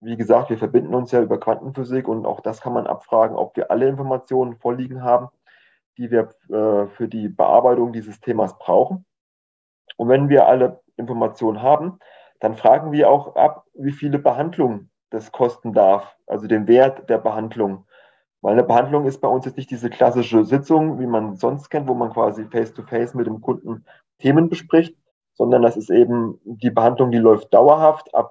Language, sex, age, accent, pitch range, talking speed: German, male, 30-49, German, 110-135 Hz, 180 wpm